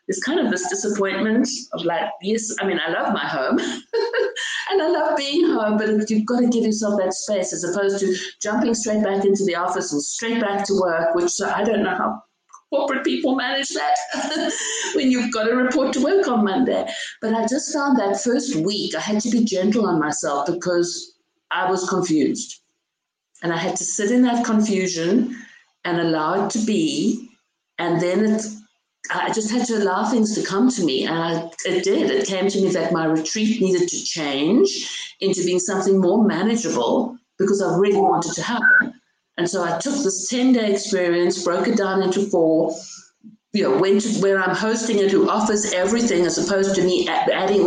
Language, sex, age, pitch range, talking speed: English, female, 50-69, 180-250 Hz, 195 wpm